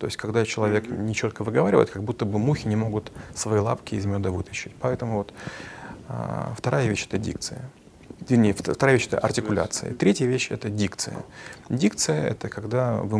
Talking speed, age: 175 wpm, 30-49